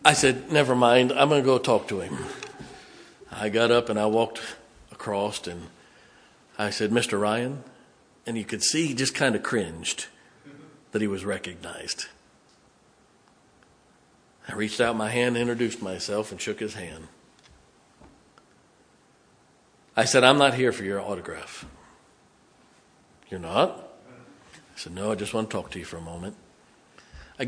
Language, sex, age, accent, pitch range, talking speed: English, male, 50-69, American, 105-135 Hz, 155 wpm